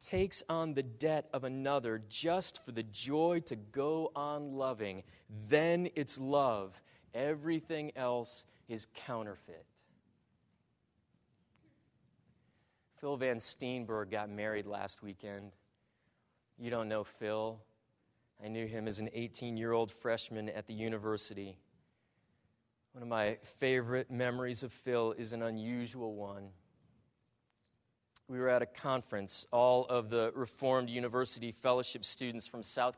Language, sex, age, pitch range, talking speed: English, male, 30-49, 110-140 Hz, 120 wpm